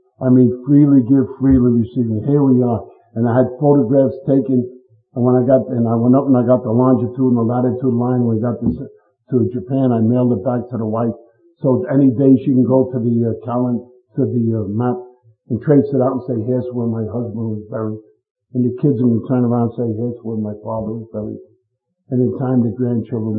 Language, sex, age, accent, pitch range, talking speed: English, male, 50-69, American, 115-135 Hz, 235 wpm